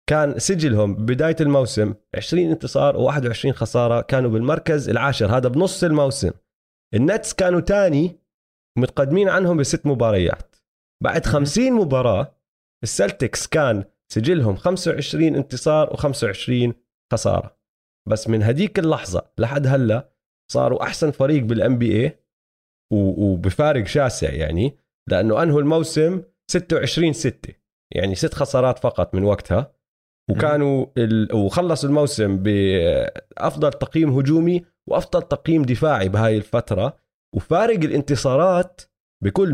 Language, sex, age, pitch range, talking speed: Arabic, male, 30-49, 115-165 Hz, 105 wpm